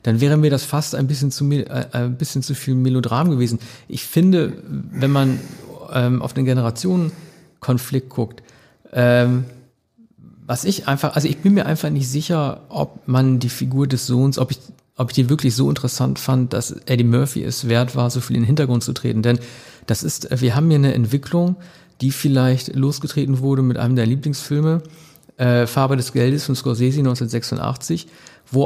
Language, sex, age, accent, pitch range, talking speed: German, male, 50-69, German, 120-145 Hz, 175 wpm